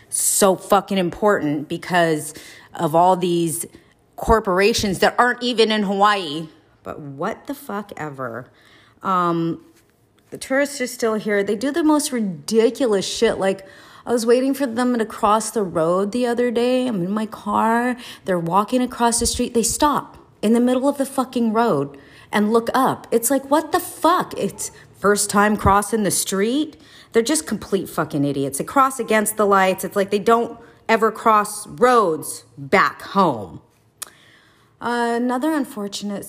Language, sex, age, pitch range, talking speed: English, female, 30-49, 170-235 Hz, 160 wpm